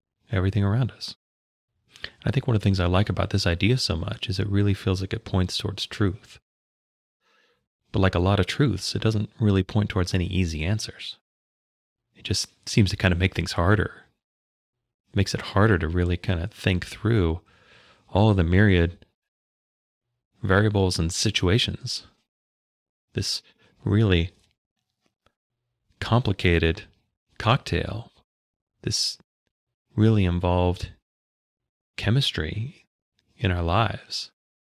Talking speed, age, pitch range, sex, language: 135 wpm, 30-49, 90-110 Hz, male, English